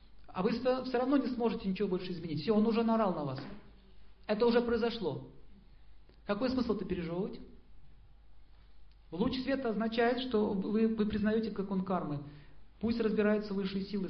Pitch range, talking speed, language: 155-215 Hz, 150 wpm, Russian